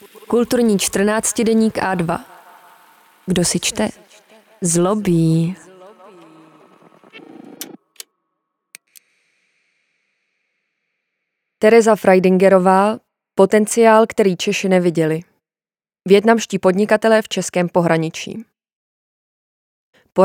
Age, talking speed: 20-39, 60 wpm